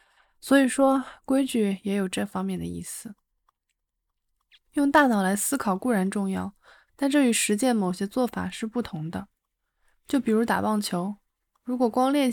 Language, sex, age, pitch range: Chinese, female, 20-39, 190-240 Hz